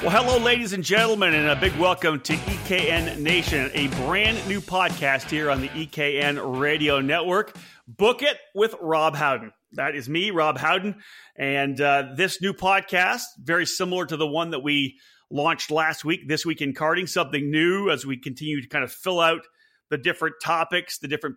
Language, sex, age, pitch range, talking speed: English, male, 30-49, 145-185 Hz, 185 wpm